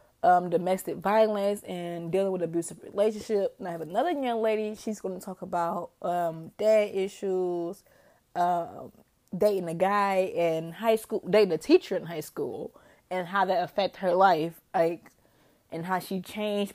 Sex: female